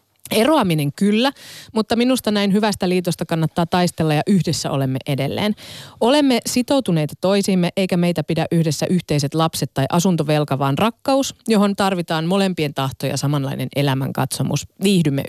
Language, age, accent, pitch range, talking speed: Finnish, 30-49, native, 150-205 Hz, 135 wpm